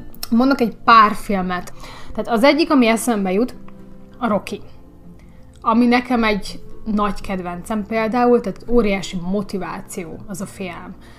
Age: 30-49